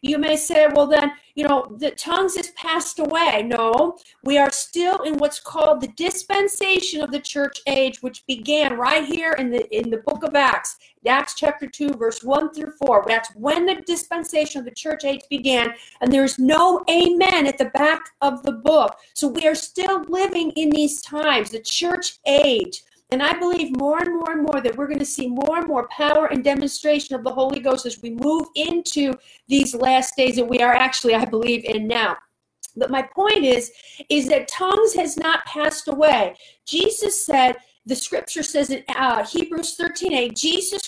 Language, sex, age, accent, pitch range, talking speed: English, female, 50-69, American, 265-330 Hz, 190 wpm